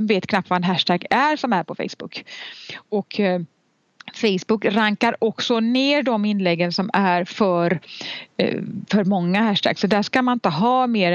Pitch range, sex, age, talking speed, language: 180-230 Hz, female, 30-49, 170 wpm, Swedish